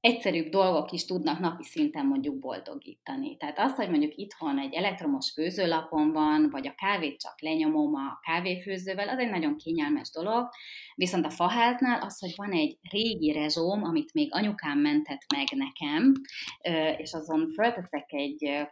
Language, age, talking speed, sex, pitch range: Hungarian, 30-49, 155 wpm, female, 170-275 Hz